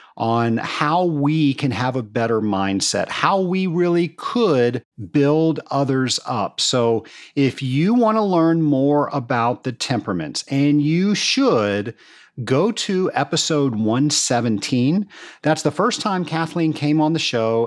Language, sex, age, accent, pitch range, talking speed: English, male, 50-69, American, 110-150 Hz, 140 wpm